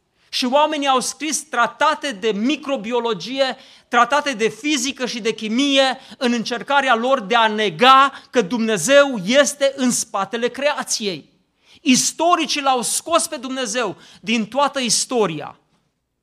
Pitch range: 240-295 Hz